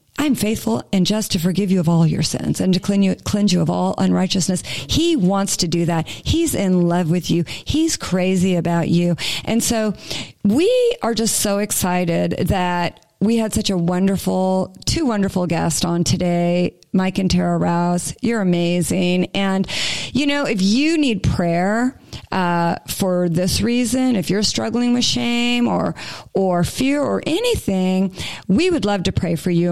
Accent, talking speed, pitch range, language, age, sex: American, 170 wpm, 175-215 Hz, English, 40-59, female